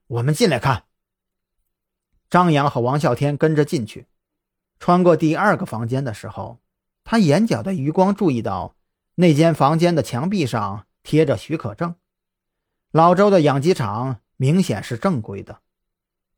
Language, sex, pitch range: Chinese, male, 115-175 Hz